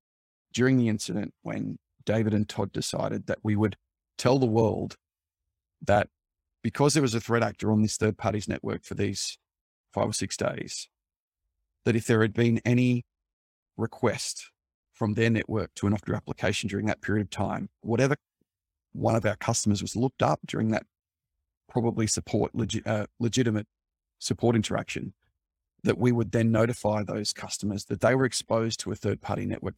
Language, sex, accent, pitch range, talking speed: English, male, Australian, 100-120 Hz, 170 wpm